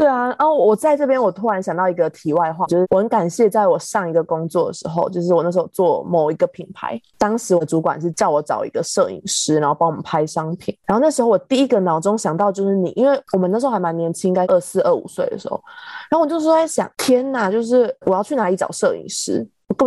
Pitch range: 175-230 Hz